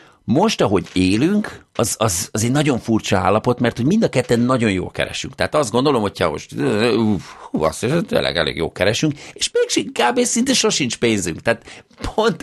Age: 50-69